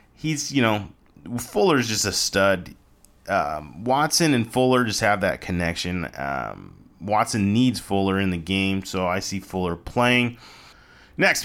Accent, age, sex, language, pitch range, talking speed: American, 30-49, male, English, 95-125 Hz, 145 wpm